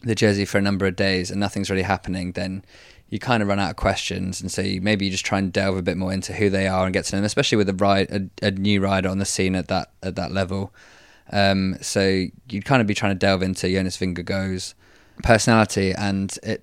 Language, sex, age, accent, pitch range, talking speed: English, male, 20-39, British, 95-110 Hz, 255 wpm